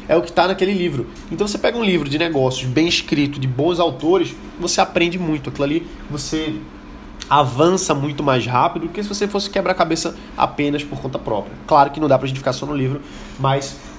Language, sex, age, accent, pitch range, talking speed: Portuguese, male, 20-39, Brazilian, 135-170 Hz, 225 wpm